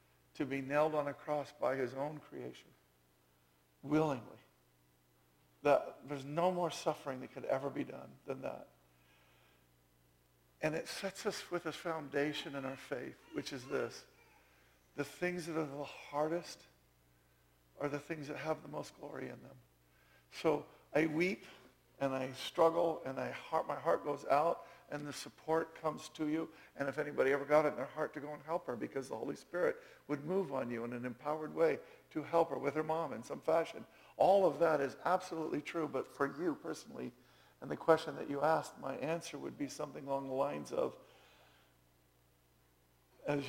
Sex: male